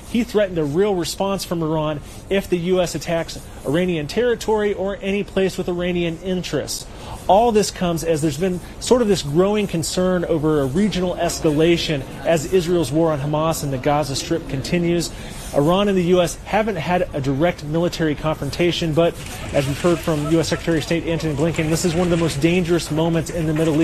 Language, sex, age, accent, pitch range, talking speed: English, male, 30-49, American, 155-180 Hz, 190 wpm